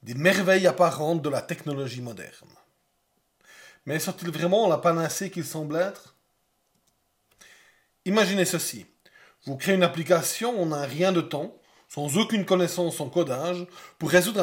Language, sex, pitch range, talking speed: French, male, 150-190 Hz, 135 wpm